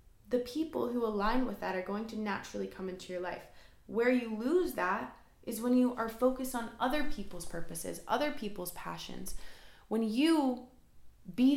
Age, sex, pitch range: 20-39, female, 190-250 Hz